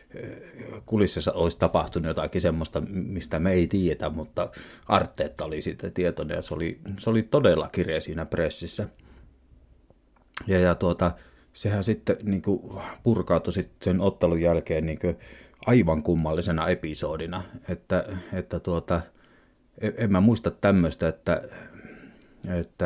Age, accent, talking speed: 30-49, native, 125 wpm